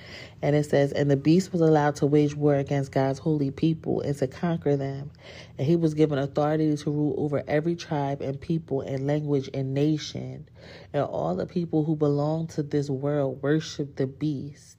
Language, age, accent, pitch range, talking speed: English, 30-49, American, 135-155 Hz, 190 wpm